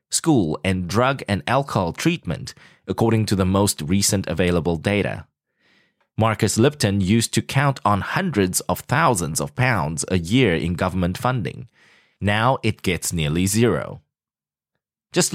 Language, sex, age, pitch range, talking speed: English, male, 20-39, 95-125 Hz, 135 wpm